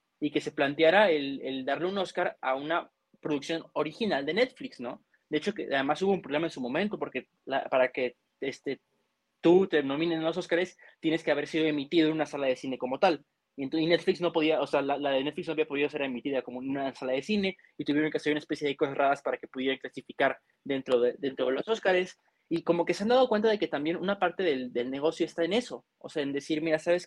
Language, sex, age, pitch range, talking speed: Spanish, male, 20-39, 140-175 Hz, 255 wpm